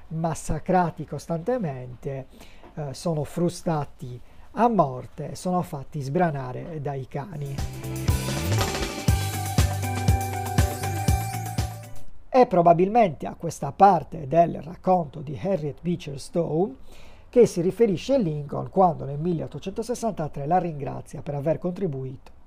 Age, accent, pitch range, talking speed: 40-59, native, 130-180 Hz, 95 wpm